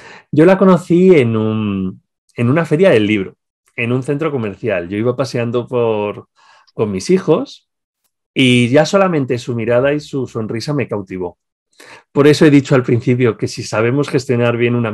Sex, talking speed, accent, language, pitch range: male, 175 wpm, Spanish, Spanish, 110-150 Hz